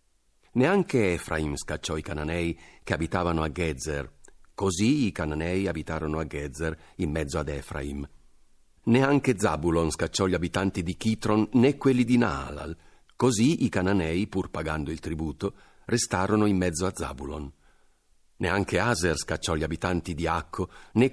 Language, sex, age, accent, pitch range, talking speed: Italian, male, 50-69, native, 80-100 Hz, 140 wpm